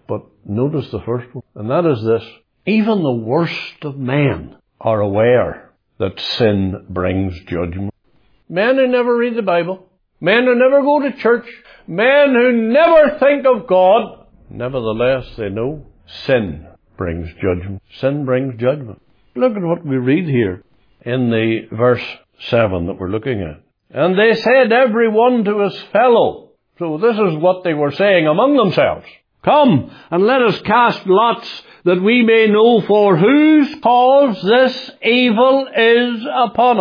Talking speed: 155 wpm